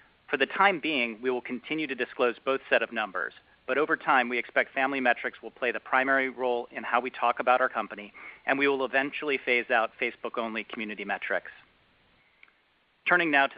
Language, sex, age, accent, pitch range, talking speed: English, male, 40-59, American, 125-140 Hz, 195 wpm